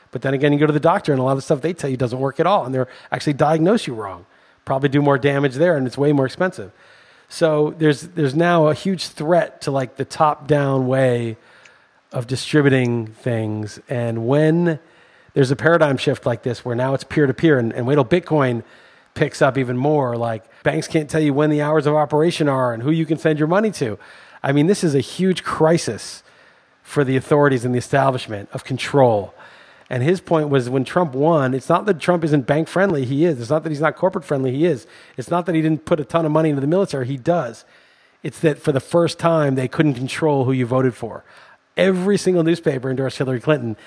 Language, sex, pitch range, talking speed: English, male, 130-160 Hz, 230 wpm